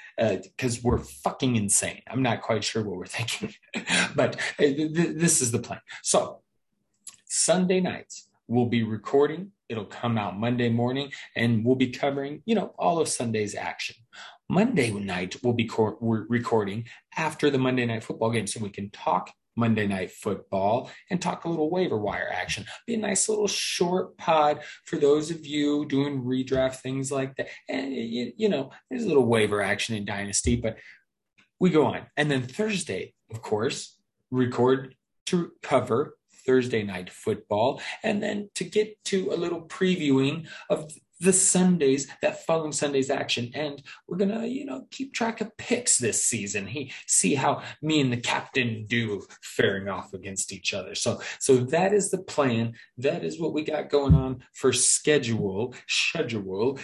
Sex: male